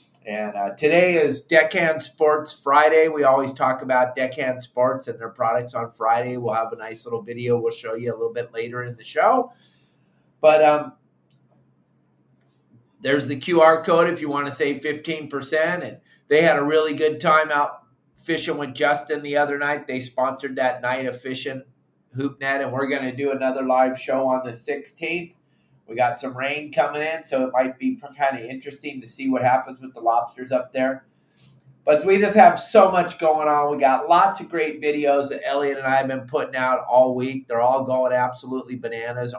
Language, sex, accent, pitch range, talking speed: English, male, American, 125-150 Hz, 195 wpm